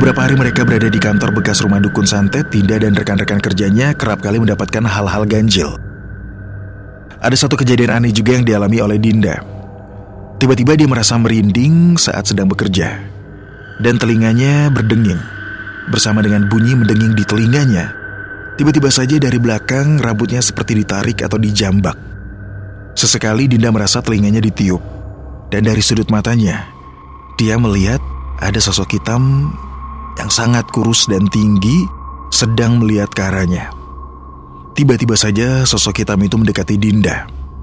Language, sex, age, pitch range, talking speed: Indonesian, male, 30-49, 100-120 Hz, 130 wpm